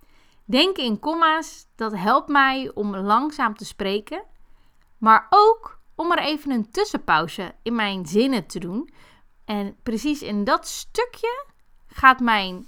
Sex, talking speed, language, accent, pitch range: female, 135 wpm, Dutch, Dutch, 215-300 Hz